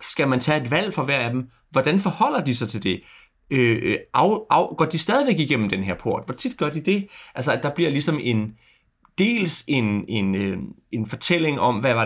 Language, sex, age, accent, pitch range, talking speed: Danish, male, 30-49, native, 110-160 Hz, 225 wpm